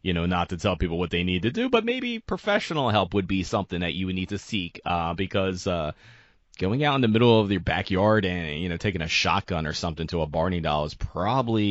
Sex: male